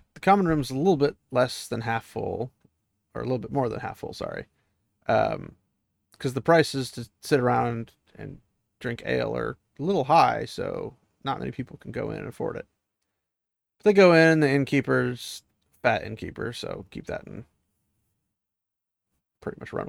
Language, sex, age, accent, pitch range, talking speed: English, male, 30-49, American, 110-145 Hz, 180 wpm